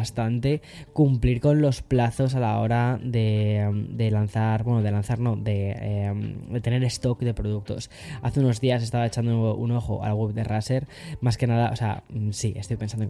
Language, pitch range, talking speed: Spanish, 110-130 Hz, 190 wpm